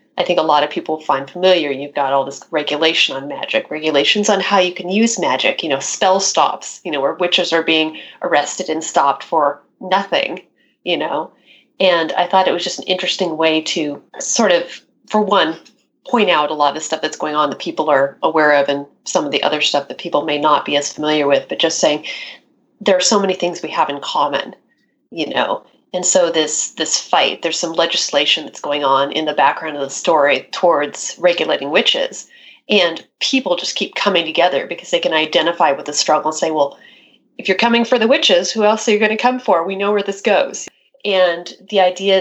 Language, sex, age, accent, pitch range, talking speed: English, female, 30-49, American, 155-205 Hz, 220 wpm